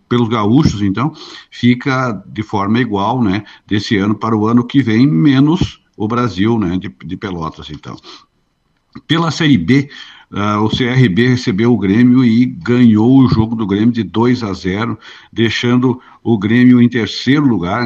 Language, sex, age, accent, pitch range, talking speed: Portuguese, male, 60-79, Brazilian, 105-130 Hz, 160 wpm